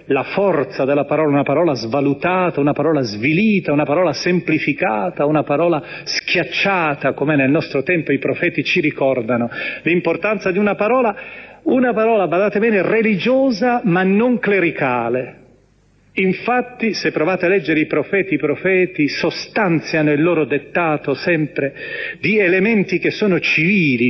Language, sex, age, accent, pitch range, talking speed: Italian, male, 40-59, native, 145-190 Hz, 135 wpm